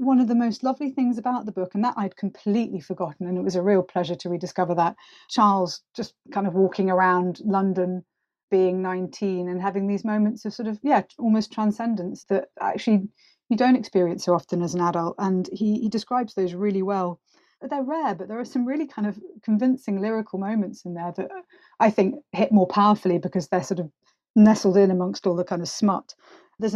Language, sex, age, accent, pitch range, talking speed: English, female, 30-49, British, 185-220 Hz, 205 wpm